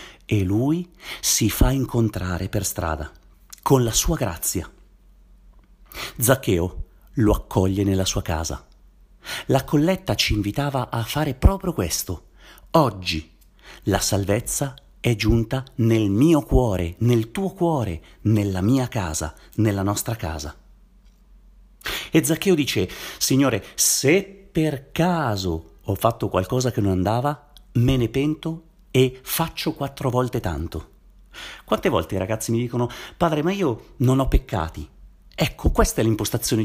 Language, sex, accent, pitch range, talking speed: Italian, male, native, 95-135 Hz, 130 wpm